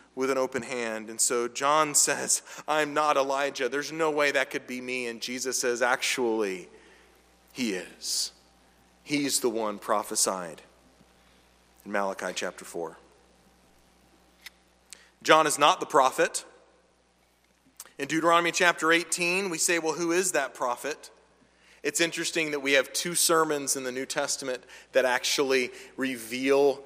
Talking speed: 140 wpm